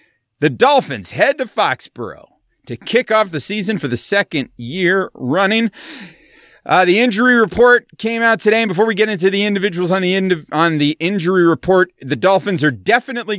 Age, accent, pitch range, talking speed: 30-49, American, 135-195 Hz, 185 wpm